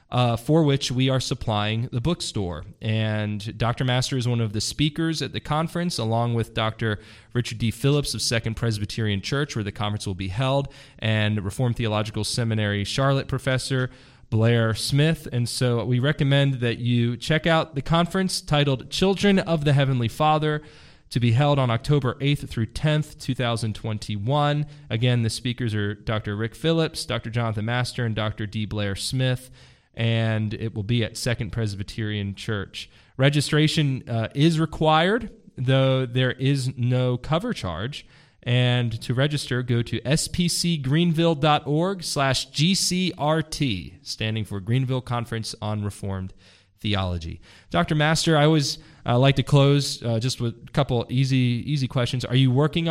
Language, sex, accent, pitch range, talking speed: English, male, American, 110-145 Hz, 150 wpm